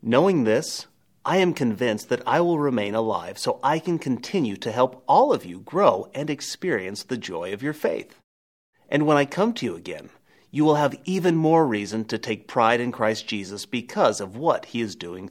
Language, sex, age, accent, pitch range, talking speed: English, male, 30-49, American, 115-170 Hz, 205 wpm